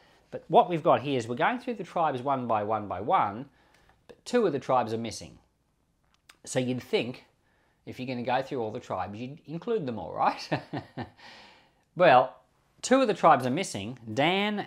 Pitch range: 110-145 Hz